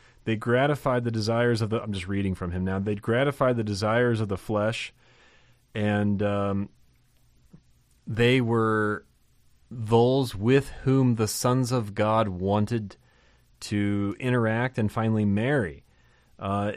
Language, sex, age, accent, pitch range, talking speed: English, male, 30-49, American, 105-125 Hz, 130 wpm